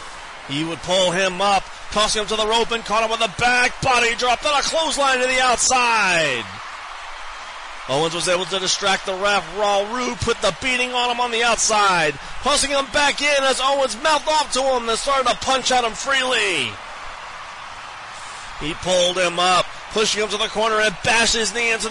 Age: 30-49